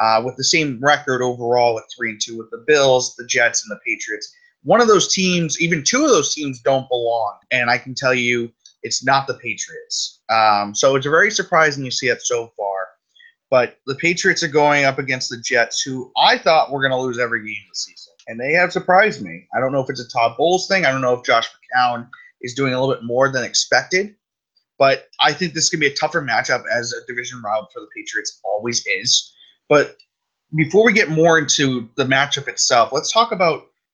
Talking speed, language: 225 wpm, English